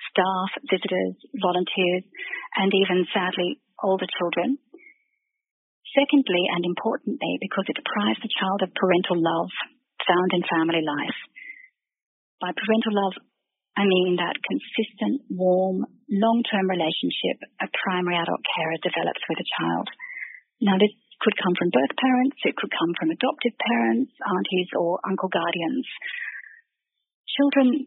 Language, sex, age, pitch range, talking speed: English, female, 40-59, 180-260 Hz, 125 wpm